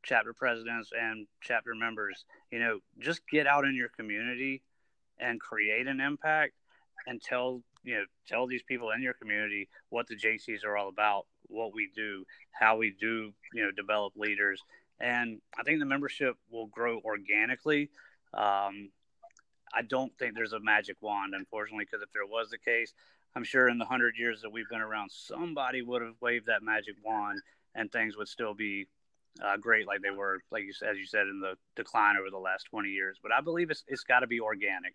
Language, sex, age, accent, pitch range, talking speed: English, male, 30-49, American, 105-130 Hz, 195 wpm